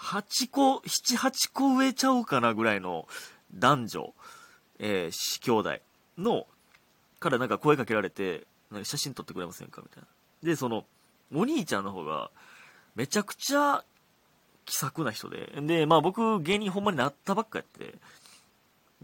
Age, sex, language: 30-49, male, Japanese